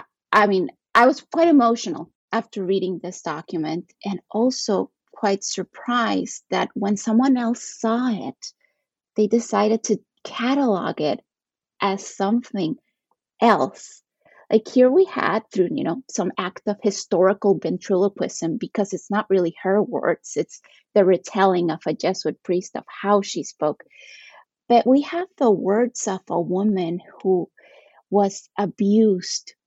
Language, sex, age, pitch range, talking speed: English, female, 30-49, 185-230 Hz, 140 wpm